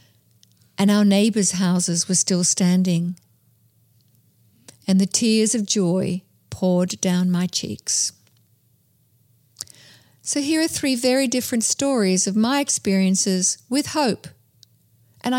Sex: female